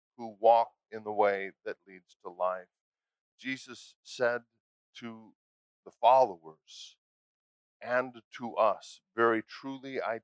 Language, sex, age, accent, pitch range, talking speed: English, male, 50-69, American, 105-130 Hz, 115 wpm